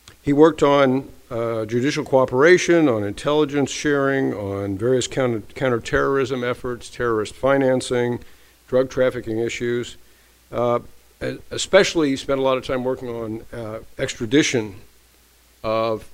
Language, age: English, 50-69